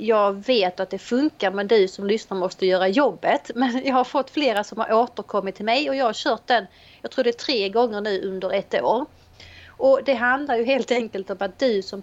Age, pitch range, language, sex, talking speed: 30-49, 205-275 Hz, Swedish, female, 235 wpm